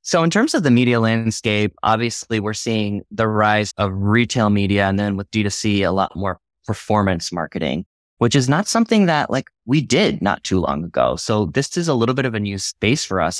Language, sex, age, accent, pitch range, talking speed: English, male, 20-39, American, 95-115 Hz, 215 wpm